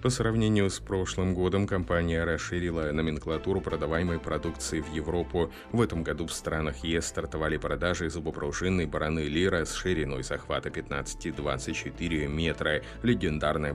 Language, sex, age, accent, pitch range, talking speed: Russian, male, 30-49, native, 75-90 Hz, 125 wpm